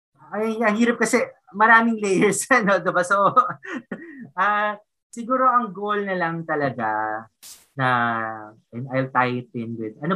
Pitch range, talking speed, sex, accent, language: 115-165 Hz, 140 wpm, male, Filipino, English